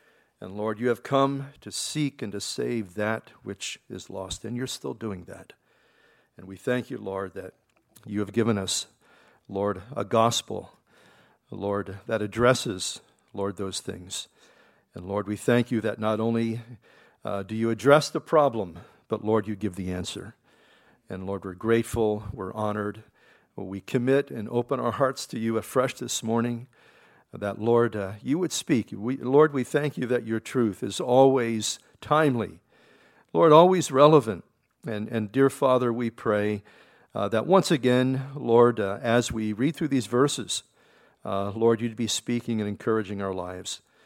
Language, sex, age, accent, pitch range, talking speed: English, male, 50-69, American, 105-125 Hz, 165 wpm